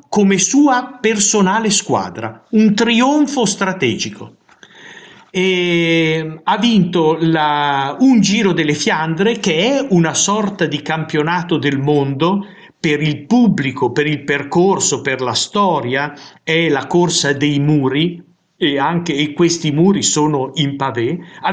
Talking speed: 130 wpm